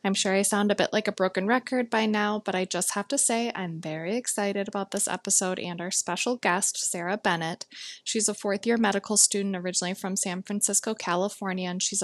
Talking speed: 210 wpm